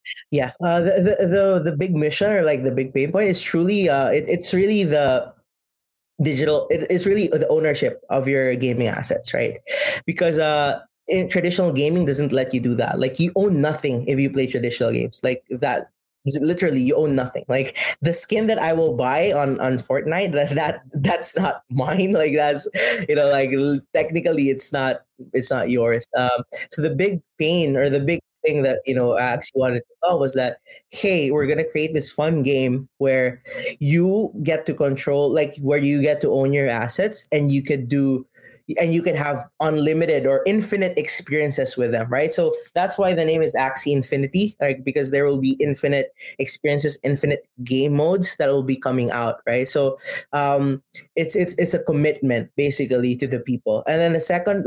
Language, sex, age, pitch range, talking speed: English, male, 20-39, 135-170 Hz, 190 wpm